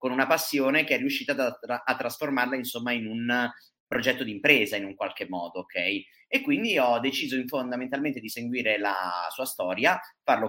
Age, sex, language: 30-49, male, Italian